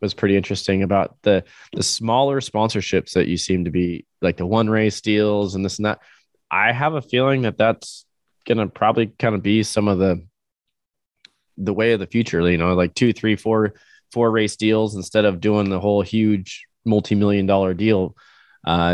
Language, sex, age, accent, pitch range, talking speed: English, male, 20-39, American, 95-110 Hz, 195 wpm